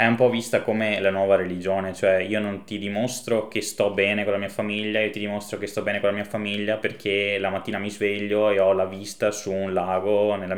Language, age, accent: Italian, 20-39, native